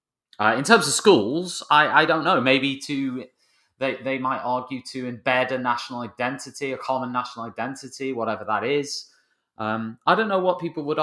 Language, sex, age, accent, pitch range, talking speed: English, male, 30-49, British, 110-145 Hz, 185 wpm